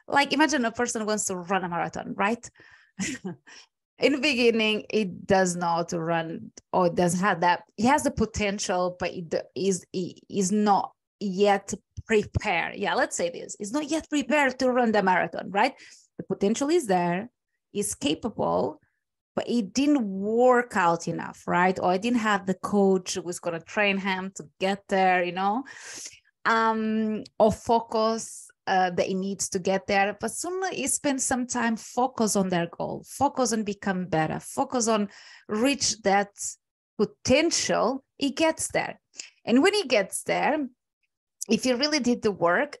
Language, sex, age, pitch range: English, female, 20-39, 190-250 Hz